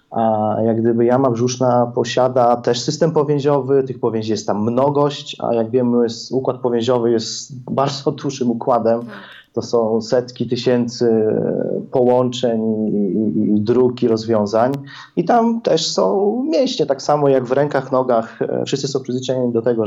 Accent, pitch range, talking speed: native, 115-140 Hz, 150 wpm